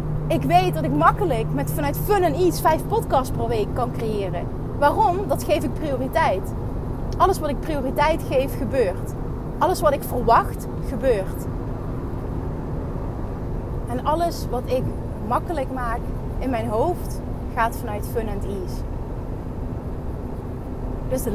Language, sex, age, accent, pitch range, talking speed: Dutch, female, 30-49, Dutch, 235-330 Hz, 125 wpm